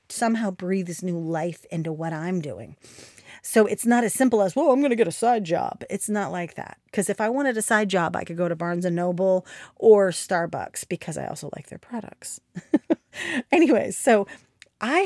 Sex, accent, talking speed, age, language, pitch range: female, American, 205 wpm, 40-59, English, 180-240 Hz